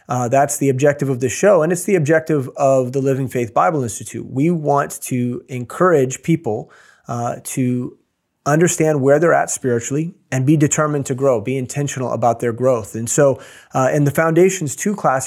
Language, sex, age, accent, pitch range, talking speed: English, male, 30-49, American, 125-150 Hz, 185 wpm